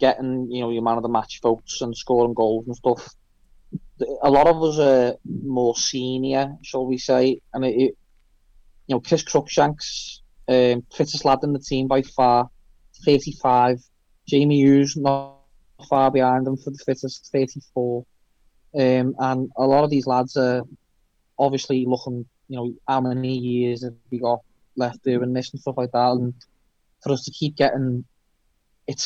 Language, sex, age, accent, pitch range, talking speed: English, male, 20-39, British, 120-135 Hz, 175 wpm